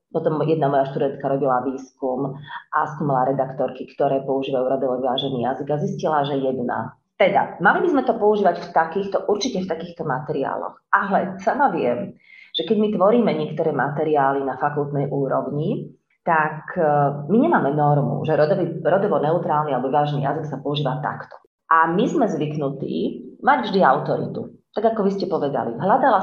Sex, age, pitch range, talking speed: female, 30-49, 140-175 Hz, 155 wpm